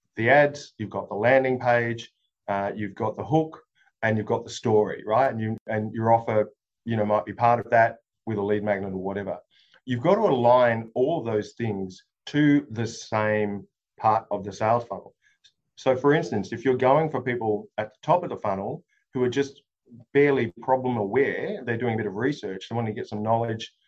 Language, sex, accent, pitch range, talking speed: English, male, Australian, 105-125 Hz, 210 wpm